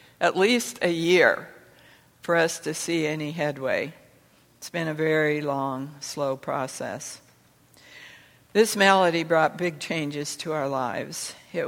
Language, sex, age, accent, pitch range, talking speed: English, female, 60-79, American, 145-165 Hz, 135 wpm